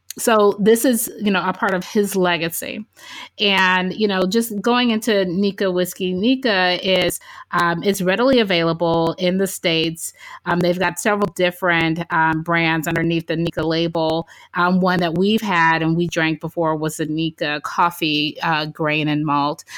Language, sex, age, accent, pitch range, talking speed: English, female, 30-49, American, 160-185 Hz, 165 wpm